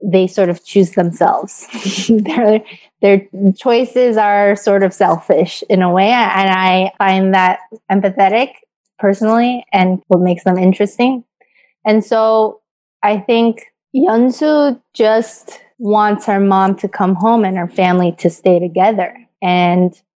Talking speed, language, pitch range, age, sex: 135 wpm, English, 190-220 Hz, 20-39, female